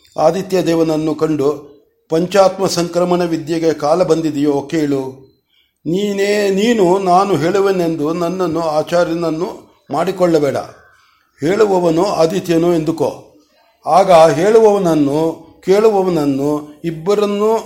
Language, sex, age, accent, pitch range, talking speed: Kannada, male, 60-79, native, 155-180 Hz, 80 wpm